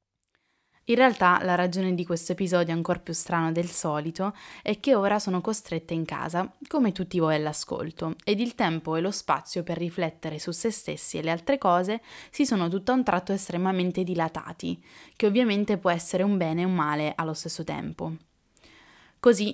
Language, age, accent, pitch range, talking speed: Italian, 20-39, native, 170-205 Hz, 180 wpm